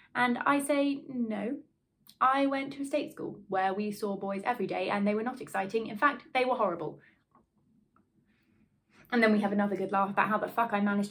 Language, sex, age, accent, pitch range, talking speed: English, female, 20-39, British, 185-235 Hz, 210 wpm